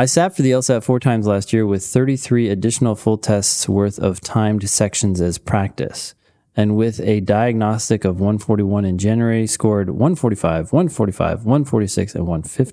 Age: 30-49